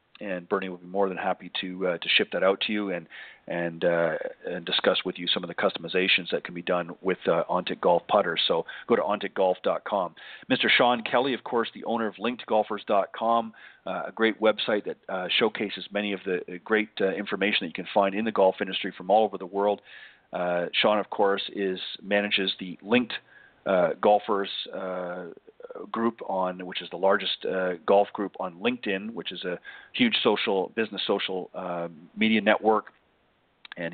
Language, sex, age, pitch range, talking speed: English, male, 40-59, 90-110 Hz, 190 wpm